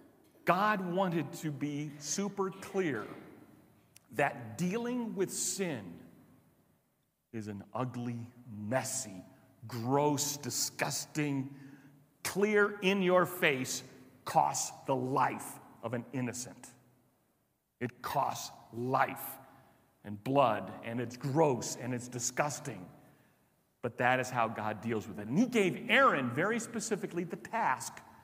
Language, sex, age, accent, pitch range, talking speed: English, male, 40-59, American, 130-200 Hz, 115 wpm